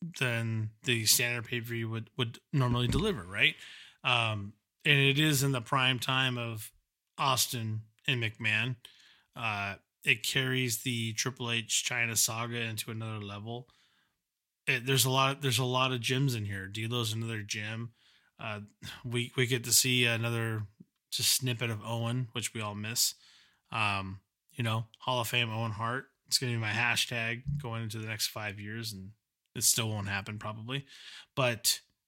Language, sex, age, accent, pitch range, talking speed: English, male, 20-39, American, 110-130 Hz, 170 wpm